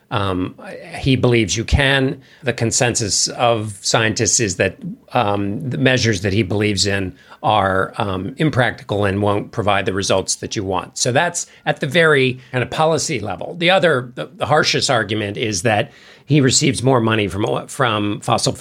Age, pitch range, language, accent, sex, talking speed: 50-69, 105-135 Hz, English, American, male, 170 wpm